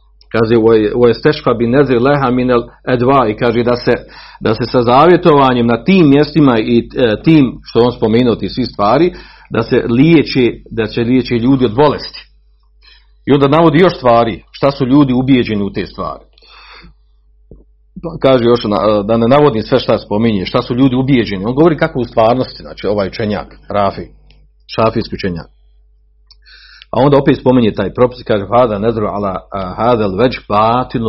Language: Croatian